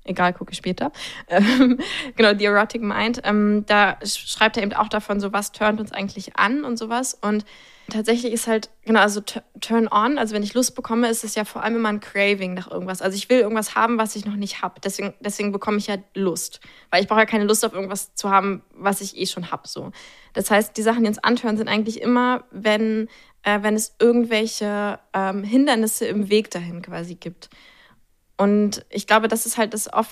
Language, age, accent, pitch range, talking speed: German, 20-39, German, 200-225 Hz, 215 wpm